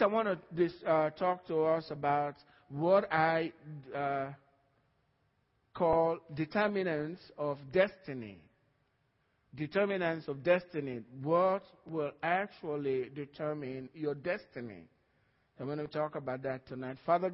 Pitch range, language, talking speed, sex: 140-185 Hz, English, 115 wpm, male